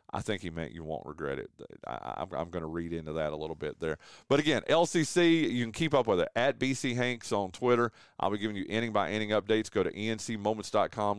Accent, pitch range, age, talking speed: American, 100-150 Hz, 40-59, 235 wpm